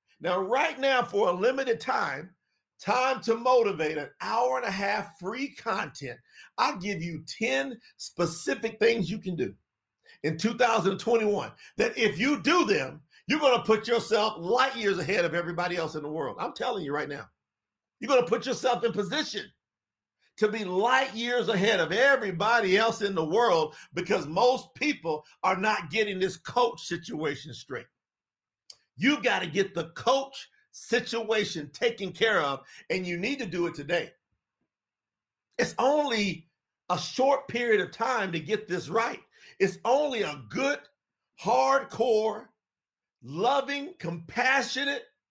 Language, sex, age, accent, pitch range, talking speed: English, male, 50-69, American, 180-255 Hz, 150 wpm